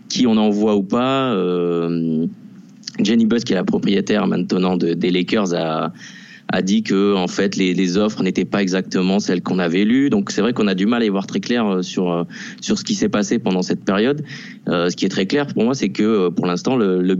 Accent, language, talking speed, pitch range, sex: French, French, 235 wpm, 90-140 Hz, male